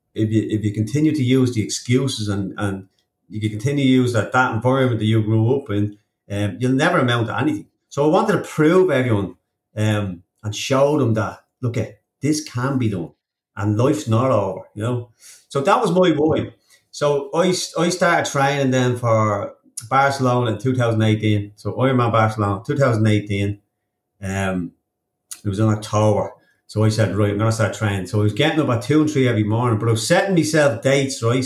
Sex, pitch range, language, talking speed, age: male, 105-135 Hz, English, 200 wpm, 30-49